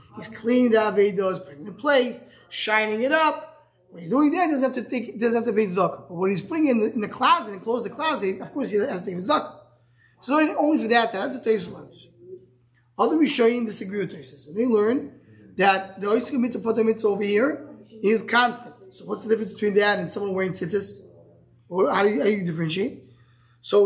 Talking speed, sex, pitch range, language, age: 245 wpm, male, 195-255 Hz, English, 20-39